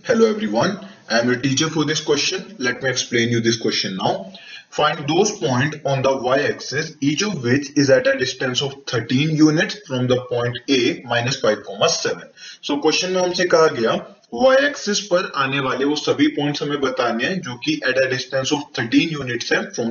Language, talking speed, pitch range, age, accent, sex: English, 195 wpm, 130-175 Hz, 20-39, Indian, male